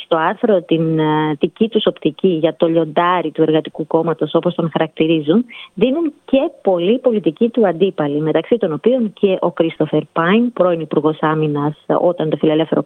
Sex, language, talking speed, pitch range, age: female, Greek, 165 wpm, 155-215 Hz, 20-39